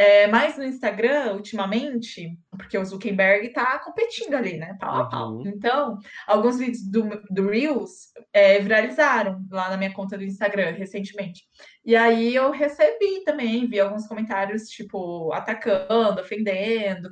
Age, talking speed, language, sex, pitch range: 20-39, 135 wpm, Portuguese, female, 200-240 Hz